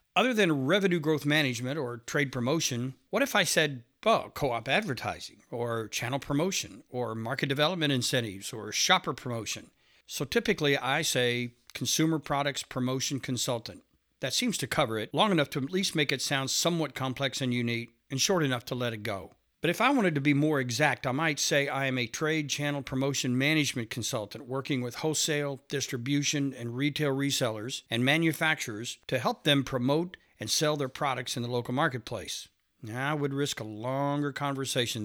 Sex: male